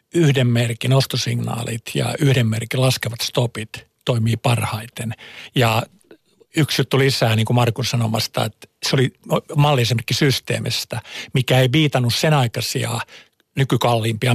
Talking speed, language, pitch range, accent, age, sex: 115 wpm, Finnish, 120-140 Hz, native, 50-69, male